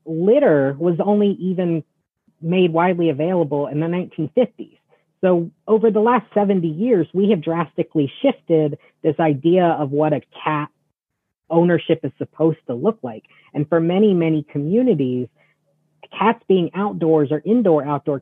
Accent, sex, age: American, female, 40-59